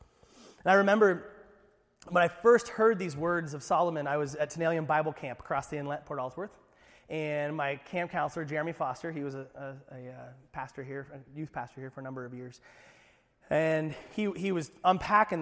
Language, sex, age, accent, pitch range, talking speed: English, male, 30-49, American, 150-205 Hz, 185 wpm